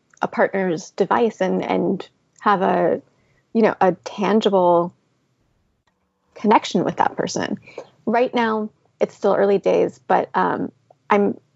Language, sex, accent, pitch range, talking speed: English, female, American, 185-225 Hz, 125 wpm